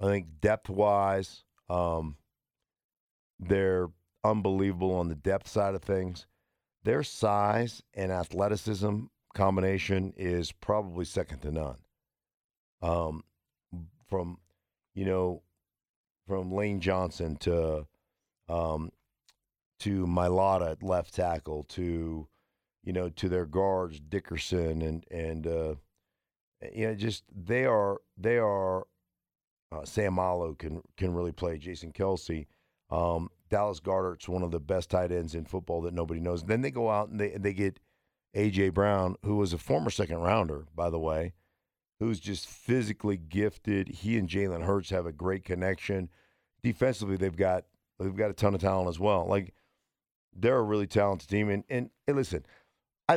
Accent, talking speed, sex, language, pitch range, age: American, 150 wpm, male, English, 85-100 Hz, 50-69